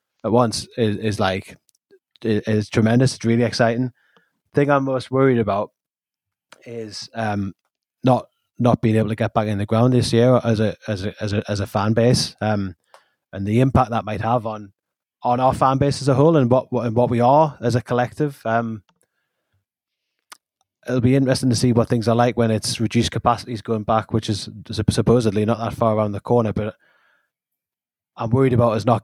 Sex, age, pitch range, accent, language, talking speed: male, 20-39, 105-125 Hz, British, English, 200 wpm